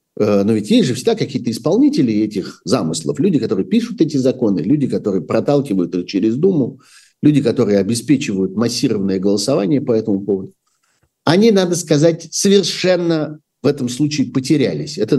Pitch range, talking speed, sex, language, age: 110-150 Hz, 145 wpm, male, Russian, 50-69